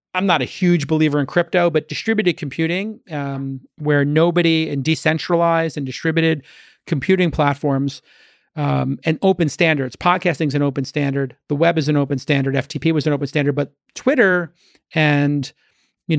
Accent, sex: American, male